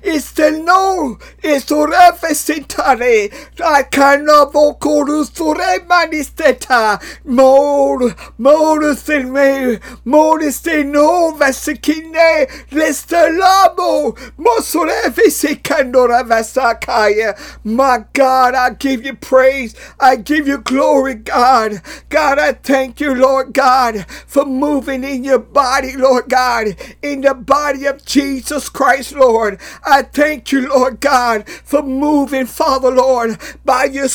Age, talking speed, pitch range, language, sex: 50-69, 130 wpm, 260-305 Hz, English, male